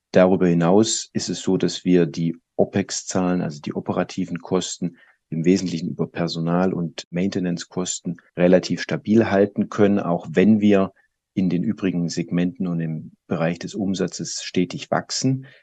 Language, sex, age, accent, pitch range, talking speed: German, male, 40-59, German, 85-100 Hz, 140 wpm